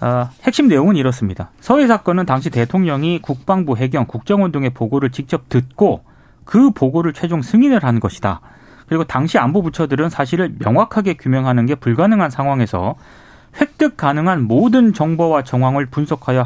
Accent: native